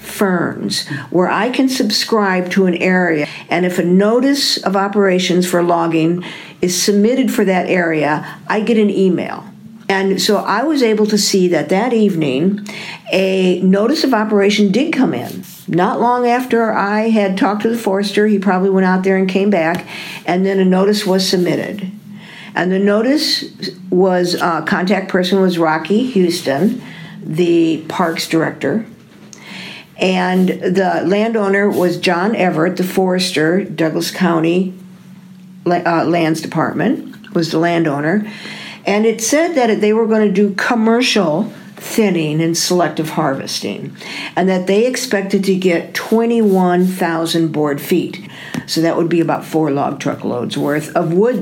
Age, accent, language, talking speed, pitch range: 50-69, American, English, 150 wpm, 175-210 Hz